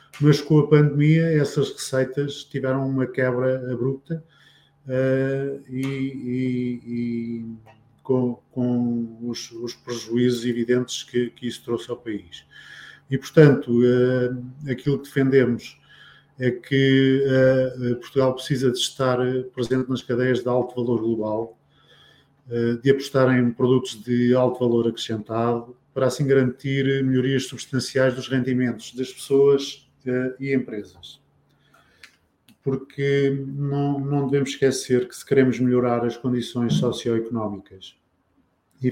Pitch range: 120-140 Hz